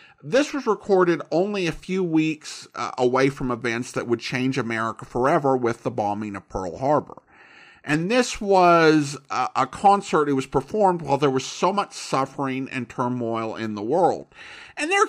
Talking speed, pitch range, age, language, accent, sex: 165 wpm, 140-215 Hz, 50-69, English, American, male